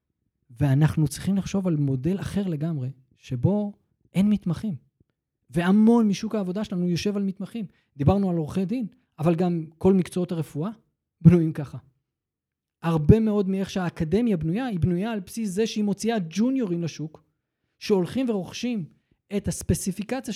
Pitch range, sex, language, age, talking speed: 155-220 Hz, male, Hebrew, 20-39, 135 wpm